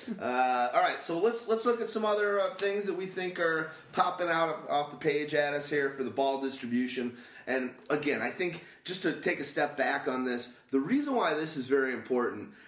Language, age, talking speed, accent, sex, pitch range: English, 30-49, 225 wpm, American, male, 130-170 Hz